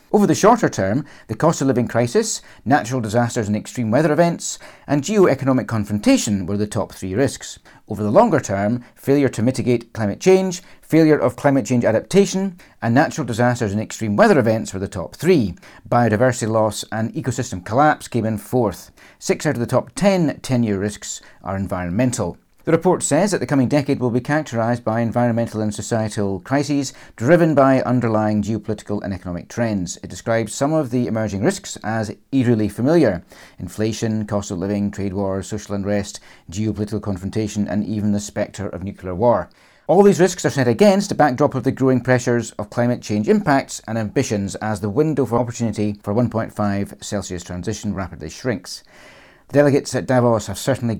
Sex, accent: male, British